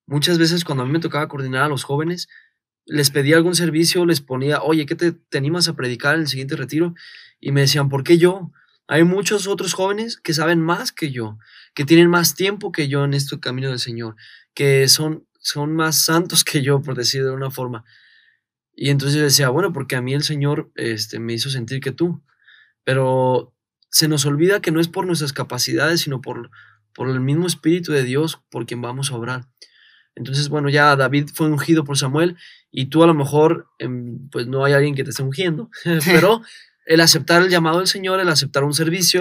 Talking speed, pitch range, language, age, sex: 210 wpm, 130-165 Hz, Spanish, 20-39, male